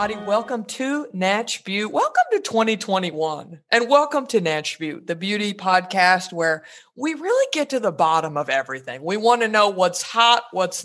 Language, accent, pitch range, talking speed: English, American, 175-280 Hz, 170 wpm